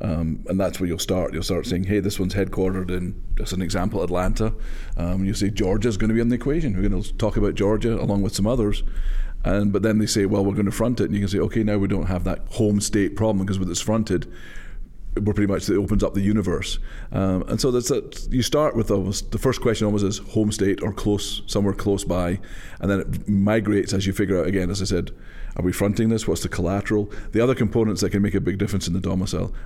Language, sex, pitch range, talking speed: English, male, 95-105 Hz, 255 wpm